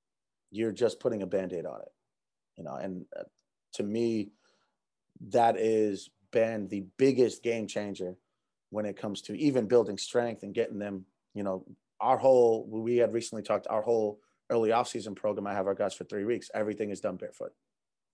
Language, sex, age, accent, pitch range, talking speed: English, male, 30-49, American, 105-120 Hz, 175 wpm